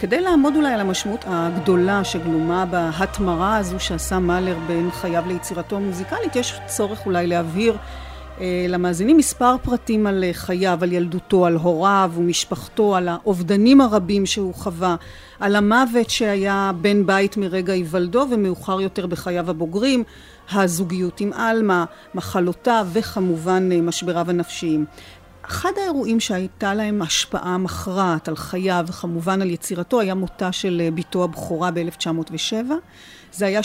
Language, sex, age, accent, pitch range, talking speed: Hebrew, female, 40-59, native, 180-210 Hz, 130 wpm